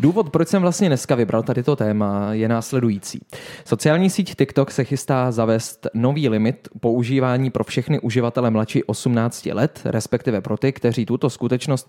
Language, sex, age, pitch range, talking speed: Czech, male, 20-39, 120-155 Hz, 160 wpm